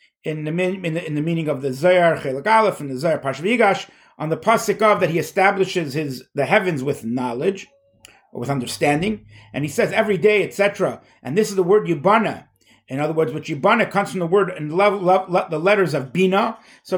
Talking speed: 205 wpm